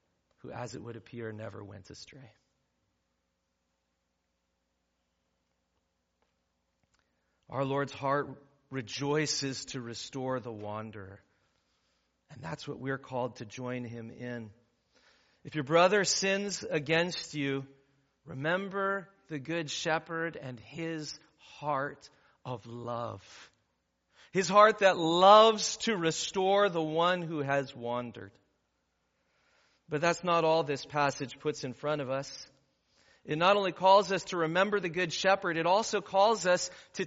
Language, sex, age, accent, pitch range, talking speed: English, male, 40-59, American, 120-200 Hz, 125 wpm